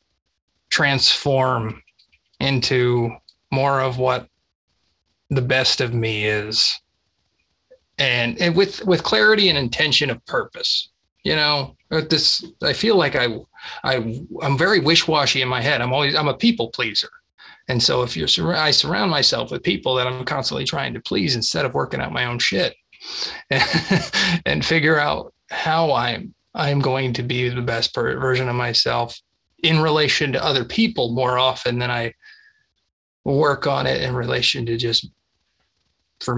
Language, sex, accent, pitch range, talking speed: English, male, American, 120-155 Hz, 155 wpm